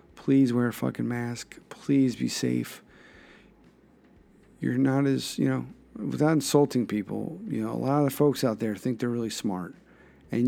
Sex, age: male, 50-69